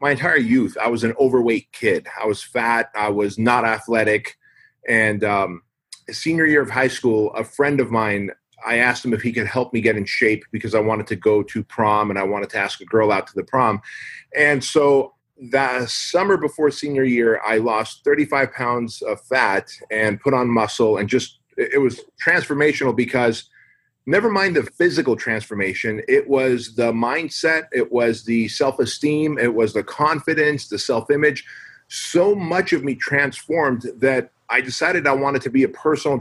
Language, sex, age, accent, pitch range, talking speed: English, male, 30-49, American, 115-150 Hz, 185 wpm